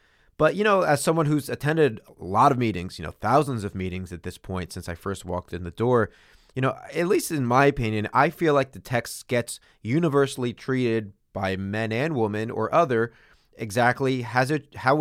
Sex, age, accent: male, 30-49, American